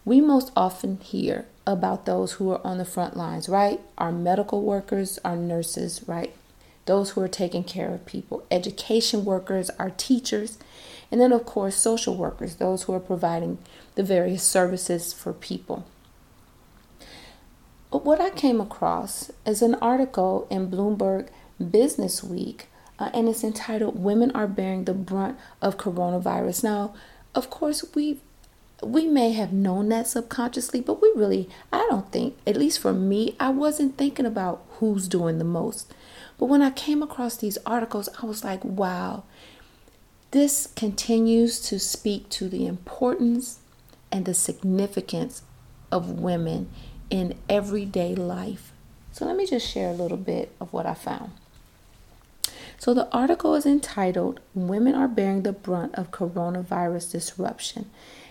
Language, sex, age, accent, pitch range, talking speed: English, female, 40-59, American, 185-235 Hz, 150 wpm